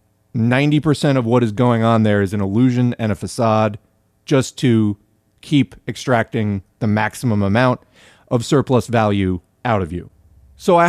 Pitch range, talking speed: 105-140 Hz, 150 wpm